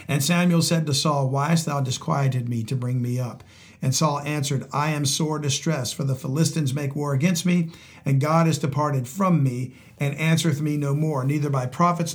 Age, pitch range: 50-69, 130-165 Hz